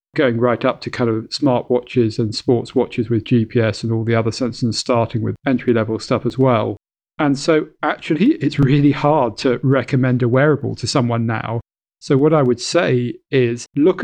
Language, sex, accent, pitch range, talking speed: English, male, British, 115-135 Hz, 195 wpm